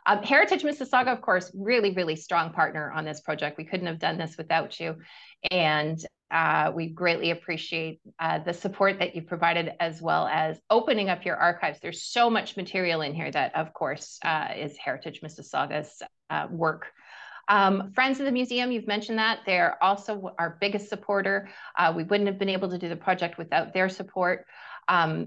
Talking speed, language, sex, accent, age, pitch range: 190 wpm, English, female, American, 30-49, 170-210 Hz